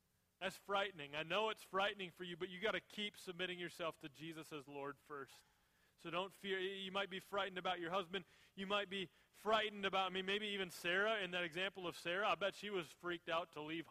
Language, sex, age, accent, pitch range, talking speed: English, male, 30-49, American, 165-200 Hz, 235 wpm